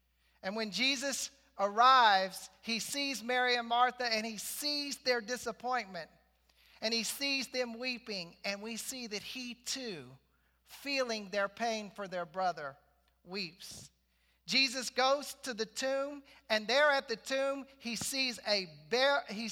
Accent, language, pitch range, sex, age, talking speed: American, English, 190-255 Hz, male, 40-59, 130 wpm